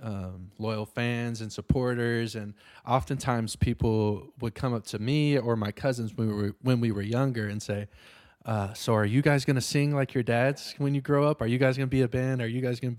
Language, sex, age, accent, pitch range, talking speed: English, male, 20-39, American, 105-130 Hz, 245 wpm